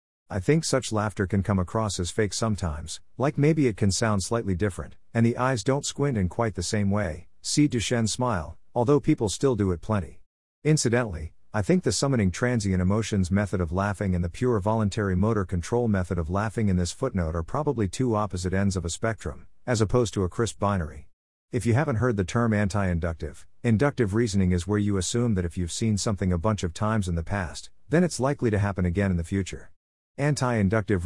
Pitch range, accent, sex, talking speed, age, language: 90-115 Hz, American, male, 210 wpm, 50-69, English